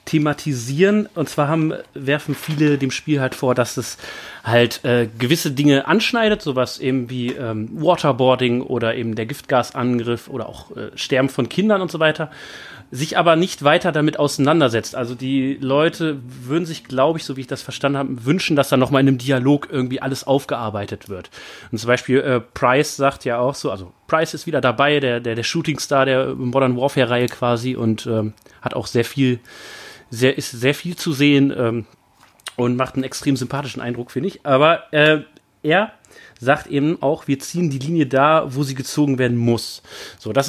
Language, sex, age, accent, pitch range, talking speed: German, male, 30-49, German, 125-150 Hz, 185 wpm